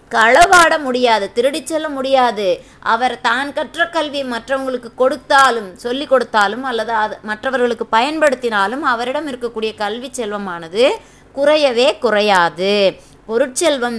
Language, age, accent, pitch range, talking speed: Tamil, 20-39, native, 220-280 Hz, 100 wpm